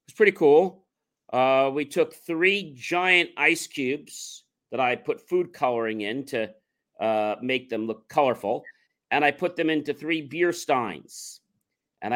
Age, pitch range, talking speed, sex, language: 40-59, 140-175 Hz, 155 wpm, male, English